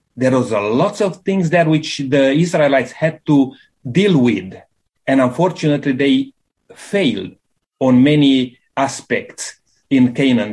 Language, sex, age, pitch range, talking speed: English, male, 40-59, 130-170 Hz, 130 wpm